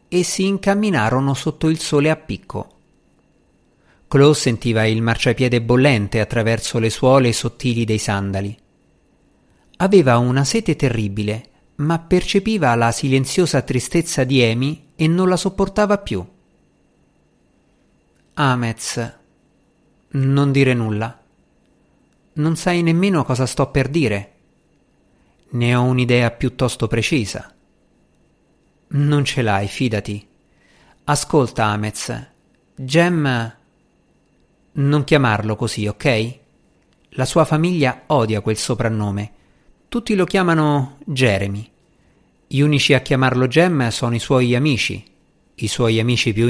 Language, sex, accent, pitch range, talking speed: Italian, male, native, 110-155 Hz, 110 wpm